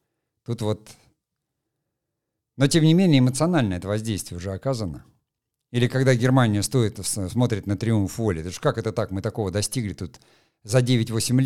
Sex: male